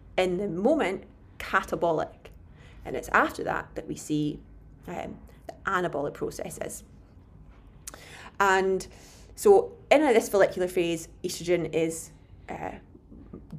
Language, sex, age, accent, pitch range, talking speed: English, female, 30-49, British, 165-215 Hz, 105 wpm